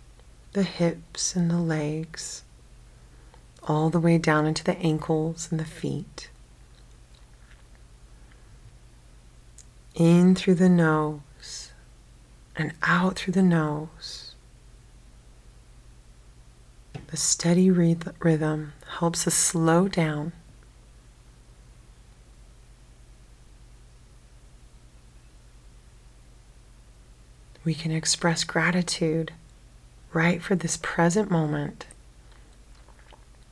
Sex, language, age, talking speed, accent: female, English, 30-49, 70 wpm, American